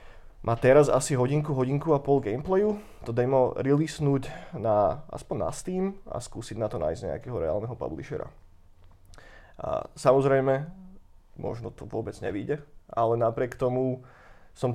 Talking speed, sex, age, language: 130 wpm, male, 30-49, Czech